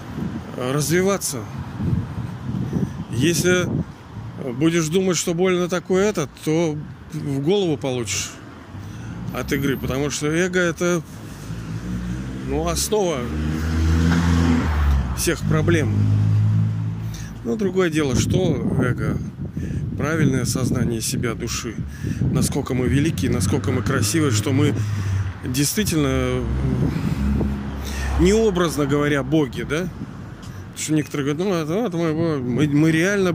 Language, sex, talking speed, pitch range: Russian, male, 95 wpm, 115-155 Hz